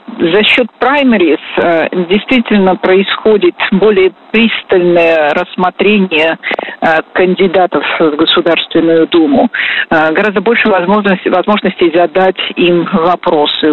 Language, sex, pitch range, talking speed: Russian, female, 165-220 Hz, 90 wpm